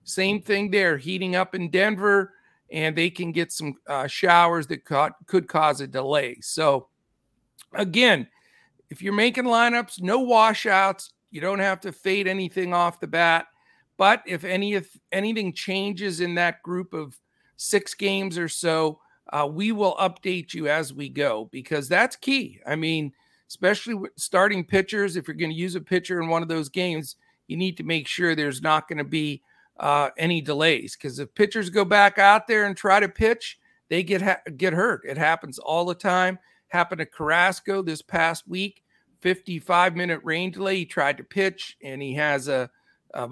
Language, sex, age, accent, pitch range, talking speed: English, male, 50-69, American, 155-195 Hz, 185 wpm